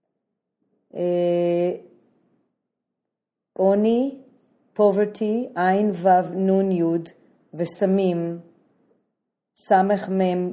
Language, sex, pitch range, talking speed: English, female, 170-195 Hz, 55 wpm